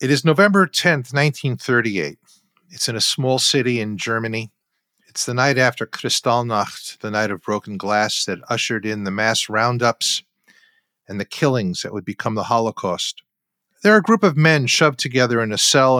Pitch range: 110-145 Hz